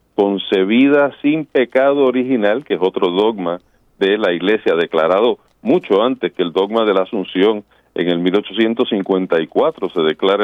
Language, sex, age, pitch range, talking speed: Spanish, male, 40-59, 100-130 Hz, 145 wpm